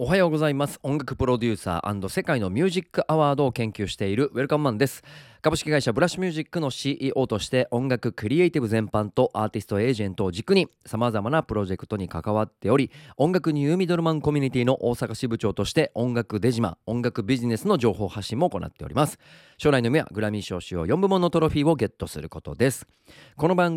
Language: Japanese